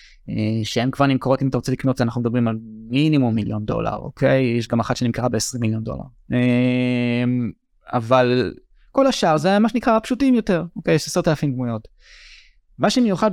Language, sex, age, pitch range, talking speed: Hebrew, male, 20-39, 125-175 Hz, 175 wpm